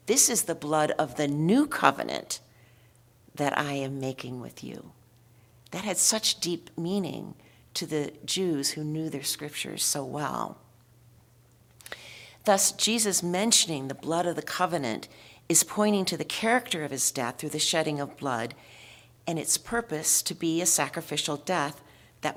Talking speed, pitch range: 155 wpm, 135-175 Hz